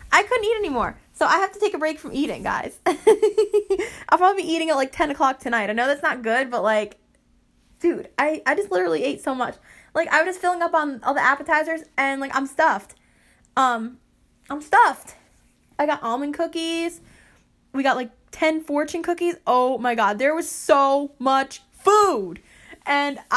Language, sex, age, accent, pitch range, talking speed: English, female, 10-29, American, 225-315 Hz, 190 wpm